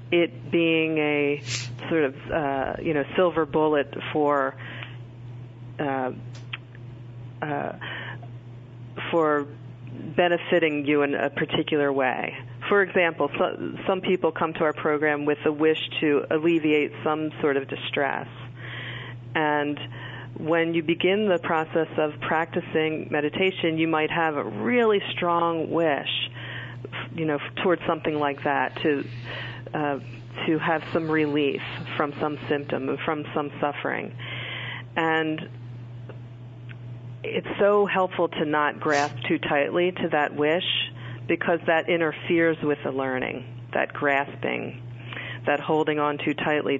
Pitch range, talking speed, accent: 125-160 Hz, 125 wpm, American